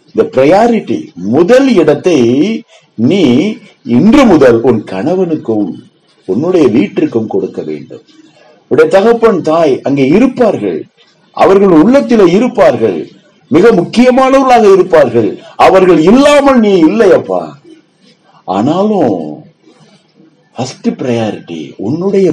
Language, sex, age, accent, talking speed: Tamil, male, 60-79, native, 55 wpm